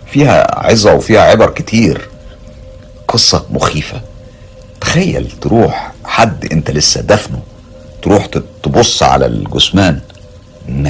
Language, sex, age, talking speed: Arabic, male, 50-69, 100 wpm